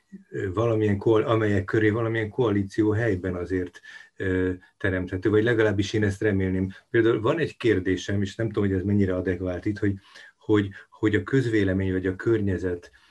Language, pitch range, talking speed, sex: Hungarian, 95-110 Hz, 160 wpm, male